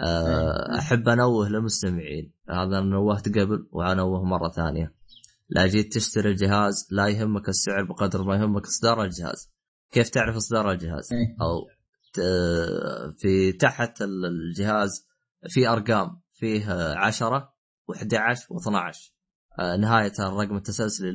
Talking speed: 110 wpm